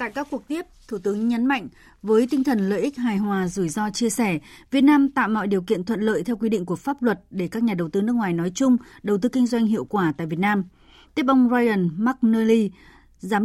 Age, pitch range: 20-39, 190-235 Hz